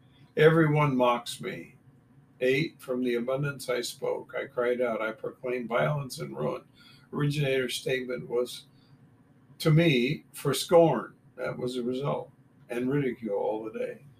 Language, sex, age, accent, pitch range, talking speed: English, male, 60-79, American, 125-150 Hz, 140 wpm